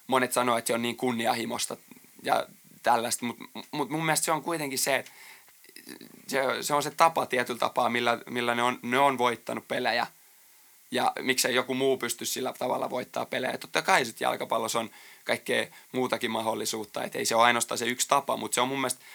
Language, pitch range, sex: Finnish, 120-135 Hz, male